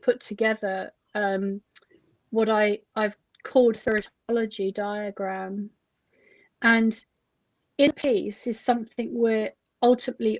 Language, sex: English, female